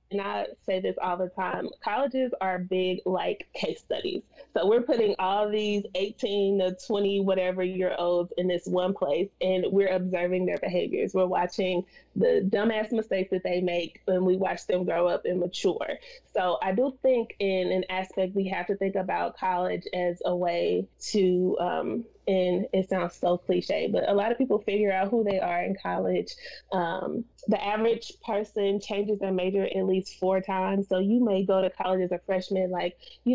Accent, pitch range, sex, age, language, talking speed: American, 180-210 Hz, female, 20-39, English, 190 wpm